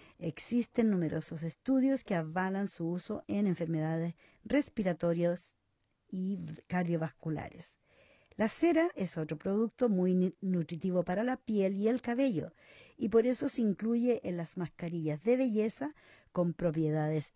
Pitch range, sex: 170-225 Hz, female